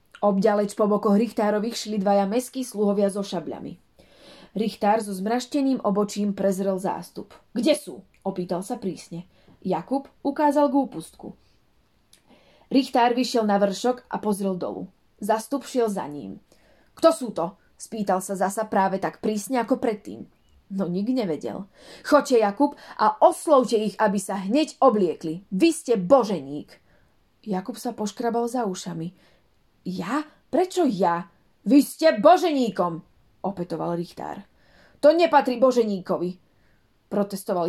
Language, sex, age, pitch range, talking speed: Slovak, female, 30-49, 190-260 Hz, 125 wpm